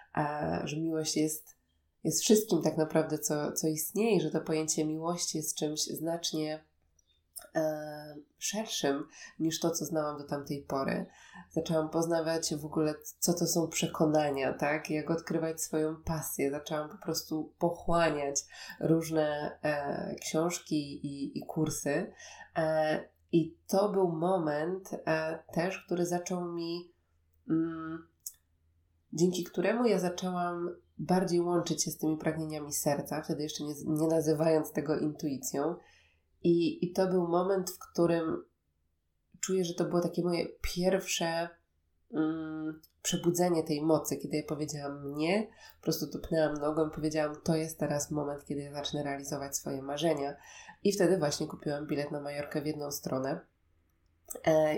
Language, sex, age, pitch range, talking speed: Polish, female, 20-39, 145-170 Hz, 140 wpm